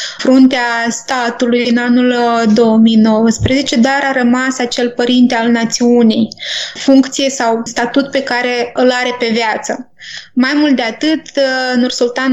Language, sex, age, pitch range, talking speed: Romanian, female, 20-39, 240-265 Hz, 125 wpm